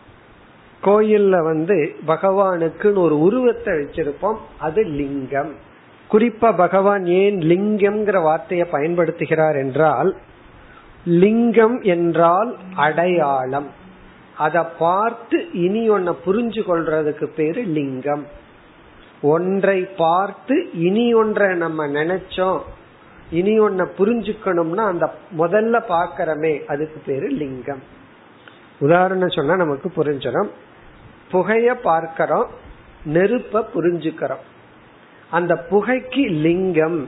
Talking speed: 80 wpm